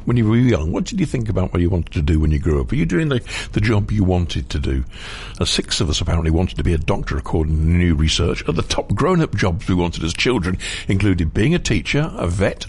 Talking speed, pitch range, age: 270 wpm, 80-105 Hz, 60-79